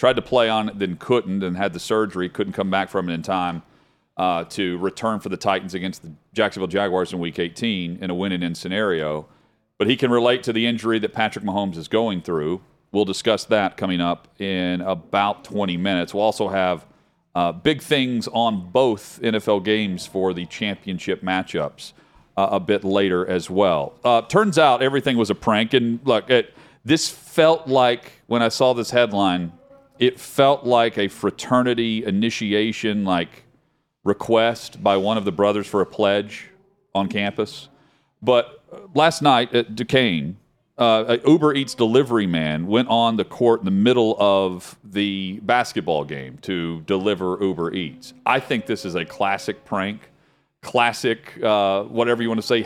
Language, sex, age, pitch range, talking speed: English, male, 40-59, 95-125 Hz, 170 wpm